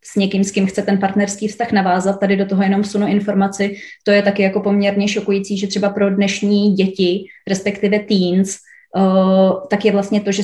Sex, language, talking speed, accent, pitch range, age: female, Czech, 195 wpm, native, 190-205 Hz, 20-39